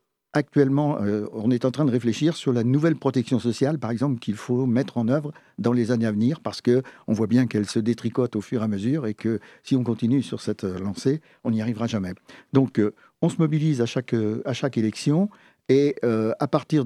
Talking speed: 225 wpm